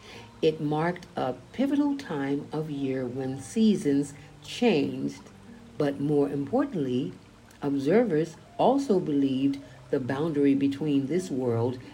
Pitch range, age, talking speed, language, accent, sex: 130-195 Hz, 50-69, 105 wpm, English, American, female